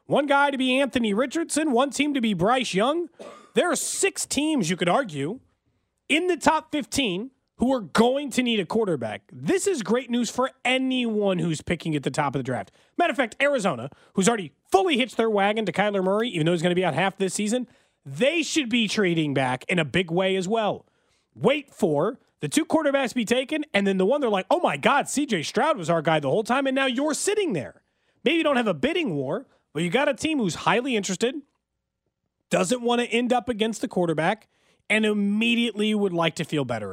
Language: English